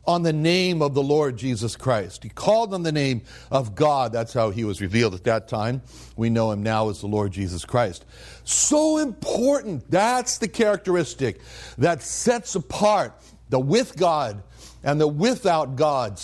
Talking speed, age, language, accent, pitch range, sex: 175 wpm, 60-79, English, American, 115-160 Hz, male